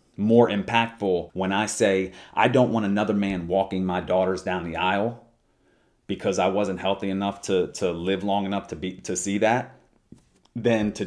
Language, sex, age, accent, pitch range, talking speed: English, male, 30-49, American, 95-125 Hz, 180 wpm